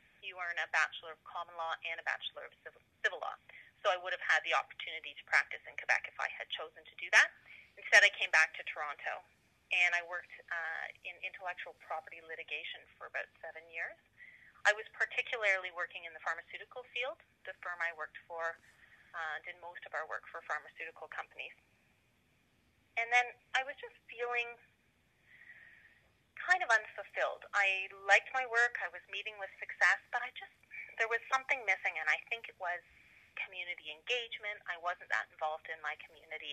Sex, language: female, English